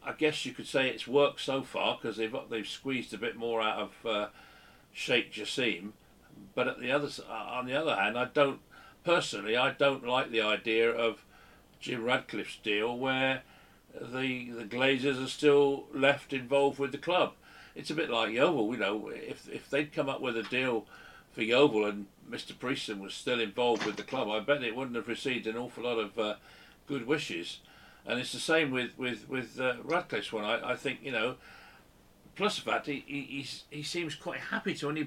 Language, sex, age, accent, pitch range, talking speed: English, male, 50-69, British, 115-145 Hz, 200 wpm